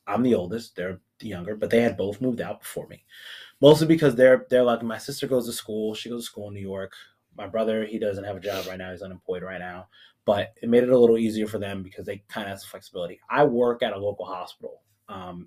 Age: 30-49